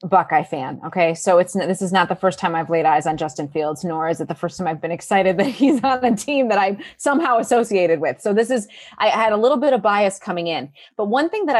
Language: English